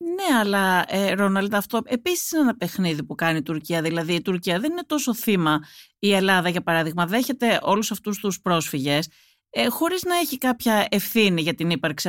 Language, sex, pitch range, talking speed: Greek, female, 160-245 Hz, 185 wpm